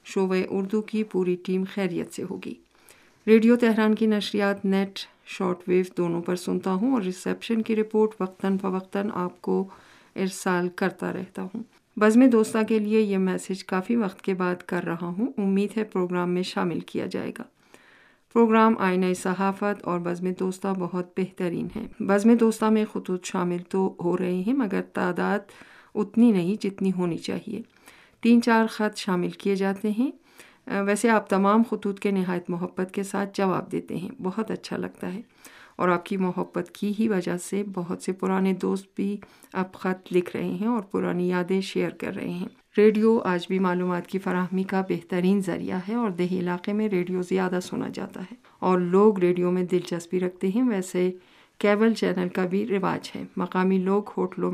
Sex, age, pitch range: female, 50-69, 180-215 Hz